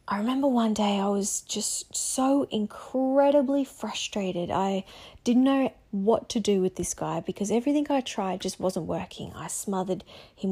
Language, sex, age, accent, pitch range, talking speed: English, female, 30-49, Australian, 185-230 Hz, 165 wpm